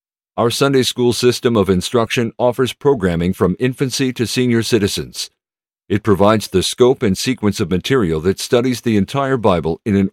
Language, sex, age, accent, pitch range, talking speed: English, male, 50-69, American, 95-120 Hz, 165 wpm